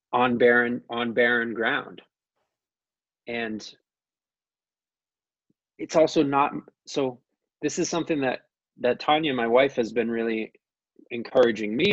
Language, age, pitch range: English, 20-39, 115-140 Hz